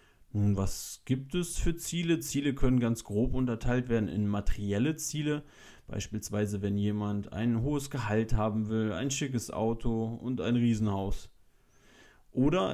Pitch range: 100-125 Hz